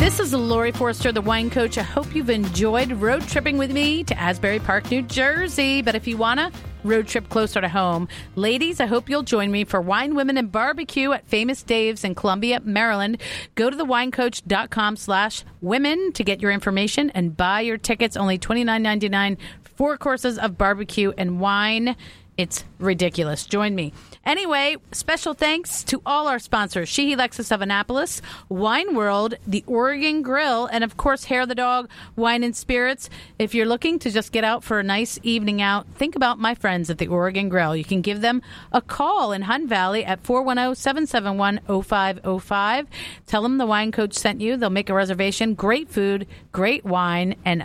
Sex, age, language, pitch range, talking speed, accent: female, 40-59, English, 195-250 Hz, 185 wpm, American